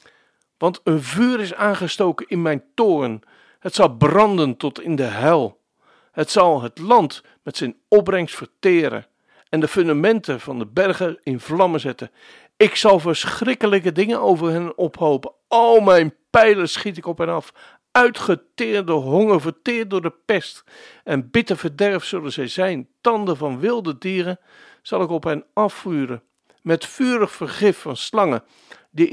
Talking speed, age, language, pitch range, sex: 150 wpm, 60-79, Dutch, 150-205 Hz, male